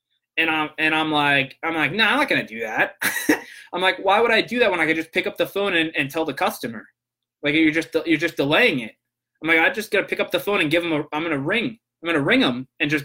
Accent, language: American, English